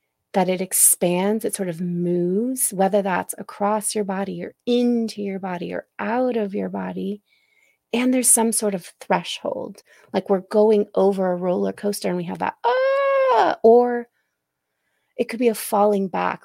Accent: American